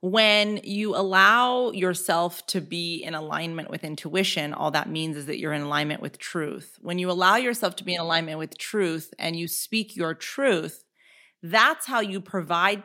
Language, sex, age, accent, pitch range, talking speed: English, female, 30-49, American, 165-200 Hz, 180 wpm